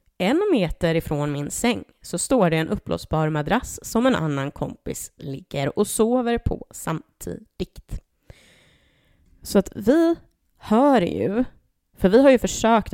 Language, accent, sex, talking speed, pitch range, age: Swedish, native, female, 140 wpm, 160-210 Hz, 20-39